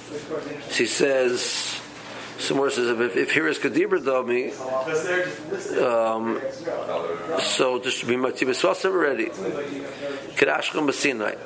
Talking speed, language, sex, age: 90 wpm, English, male, 50-69